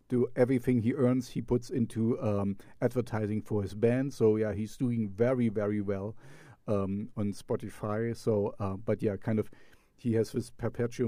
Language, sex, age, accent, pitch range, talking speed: English, male, 40-59, German, 105-130 Hz, 170 wpm